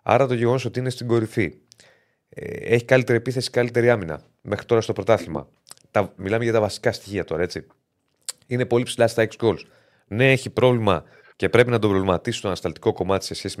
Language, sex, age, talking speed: Greek, male, 30-49, 190 wpm